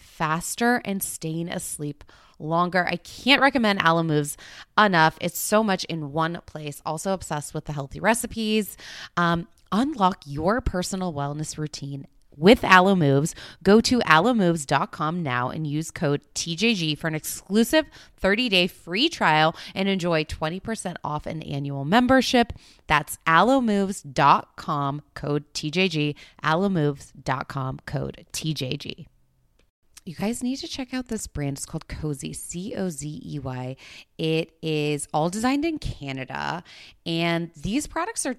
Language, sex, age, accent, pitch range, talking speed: English, female, 20-39, American, 145-190 Hz, 130 wpm